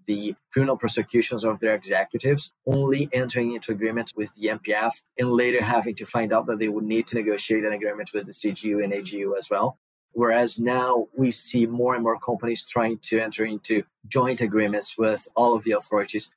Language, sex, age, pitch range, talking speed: English, male, 30-49, 110-125 Hz, 195 wpm